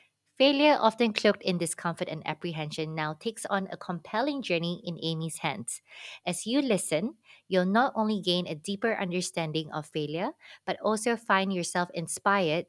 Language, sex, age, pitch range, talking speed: English, female, 20-39, 160-200 Hz, 155 wpm